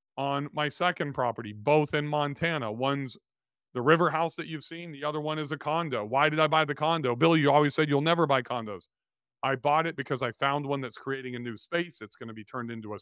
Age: 40-59